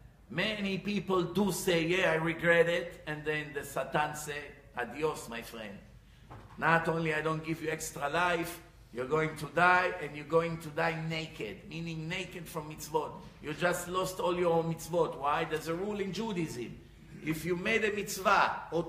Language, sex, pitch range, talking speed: English, male, 160-190 Hz, 180 wpm